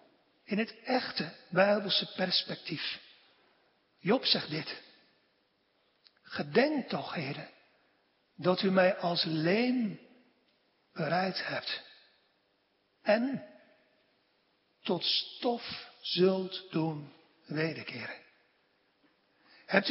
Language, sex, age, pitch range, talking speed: Dutch, male, 60-79, 175-235 Hz, 75 wpm